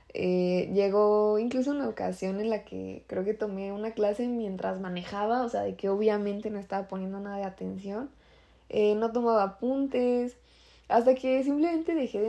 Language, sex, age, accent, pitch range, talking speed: Spanish, female, 20-39, Mexican, 190-240 Hz, 170 wpm